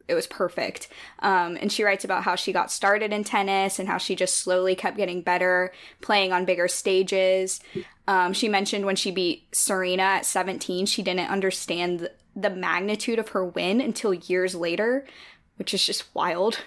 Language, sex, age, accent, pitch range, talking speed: English, female, 10-29, American, 180-210 Hz, 180 wpm